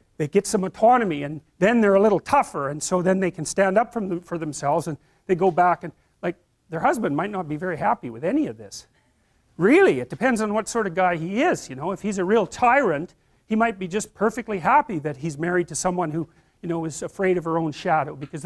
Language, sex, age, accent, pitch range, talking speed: English, male, 40-59, American, 155-210 Hz, 240 wpm